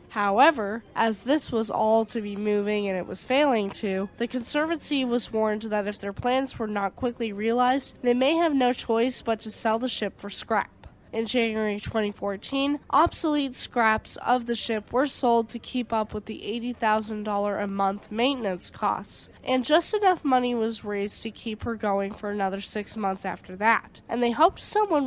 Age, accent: 10-29, American